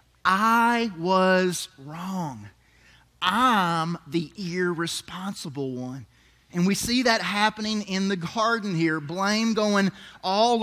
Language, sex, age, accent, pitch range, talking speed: English, male, 30-49, American, 195-270 Hz, 105 wpm